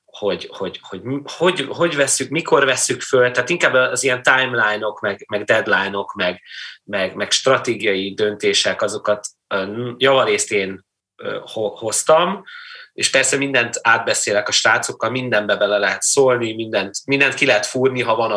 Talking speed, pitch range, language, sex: 140 wpm, 110-140 Hz, Hungarian, male